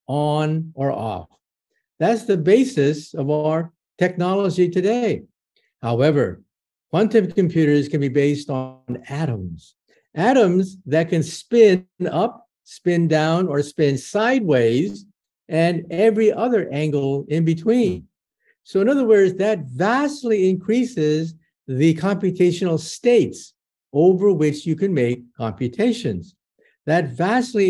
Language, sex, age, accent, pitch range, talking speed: English, male, 50-69, American, 140-195 Hz, 115 wpm